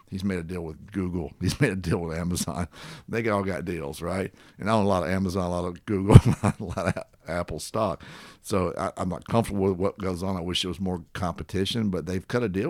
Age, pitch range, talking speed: 60-79, 90-105 Hz, 245 wpm